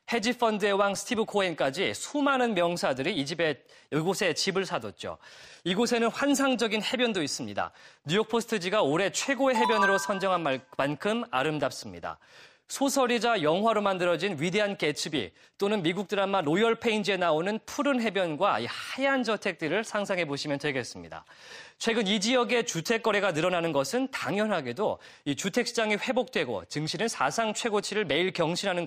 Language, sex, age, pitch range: Korean, male, 30-49, 175-225 Hz